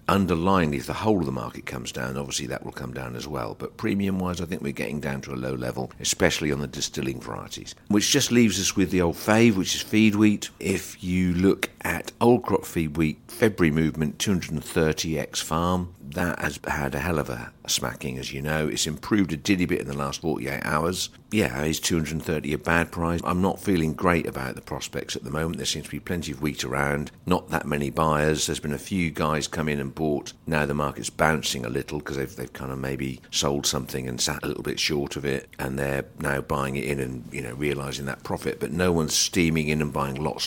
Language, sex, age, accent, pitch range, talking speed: English, male, 50-69, British, 70-85 Hz, 235 wpm